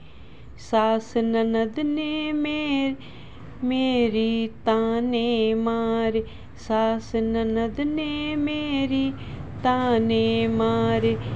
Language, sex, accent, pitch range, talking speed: Hindi, female, native, 170-235 Hz, 70 wpm